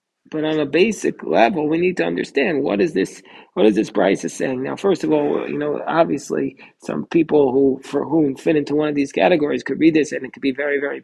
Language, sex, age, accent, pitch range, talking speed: English, male, 40-59, American, 140-170 Hz, 245 wpm